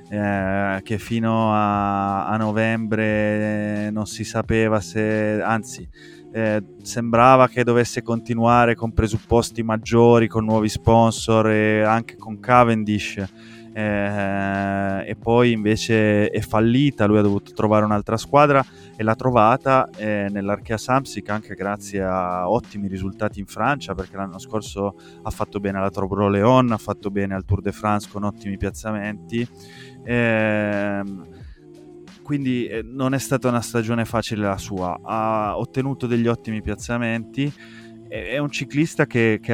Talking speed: 135 wpm